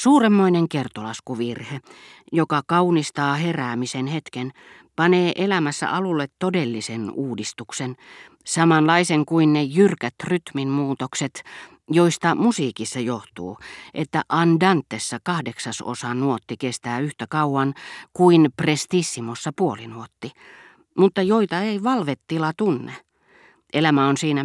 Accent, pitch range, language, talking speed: native, 125-165 Hz, Finnish, 95 wpm